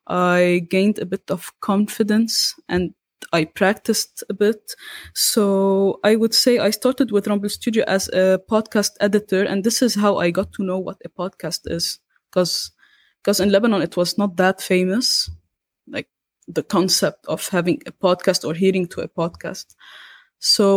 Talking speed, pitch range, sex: 165 wpm, 180-210 Hz, female